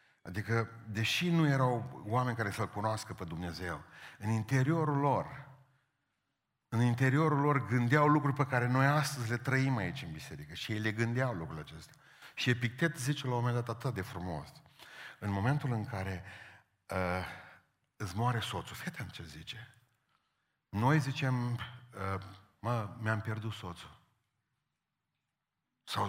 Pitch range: 90-125 Hz